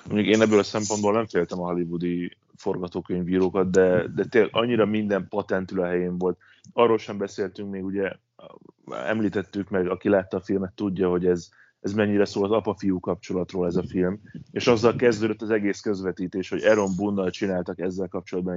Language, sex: Hungarian, male